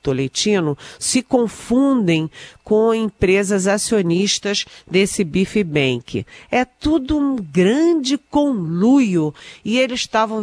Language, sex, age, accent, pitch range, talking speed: Portuguese, female, 50-69, Brazilian, 160-215 Hz, 100 wpm